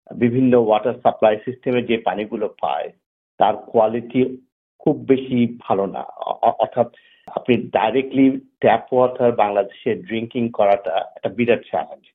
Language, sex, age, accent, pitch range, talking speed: Bengali, male, 50-69, native, 115-145 Hz, 75 wpm